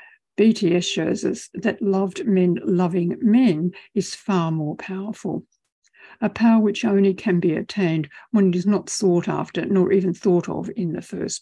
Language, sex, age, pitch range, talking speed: English, female, 60-79, 180-225 Hz, 170 wpm